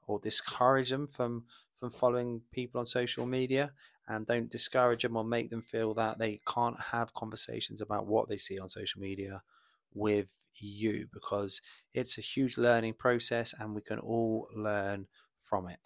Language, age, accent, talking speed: English, 20-39, British, 170 wpm